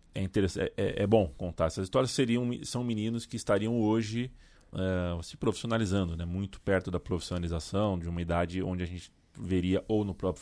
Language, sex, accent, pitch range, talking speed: Portuguese, male, Brazilian, 90-120 Hz, 165 wpm